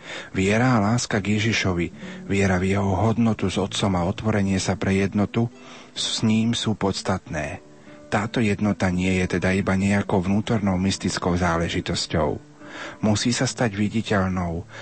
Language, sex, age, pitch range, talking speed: Slovak, male, 40-59, 95-110 Hz, 140 wpm